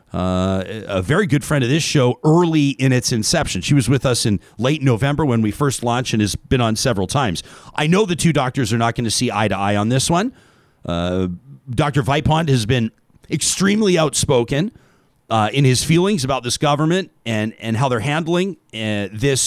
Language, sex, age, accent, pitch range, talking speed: English, male, 40-59, American, 120-155 Hz, 205 wpm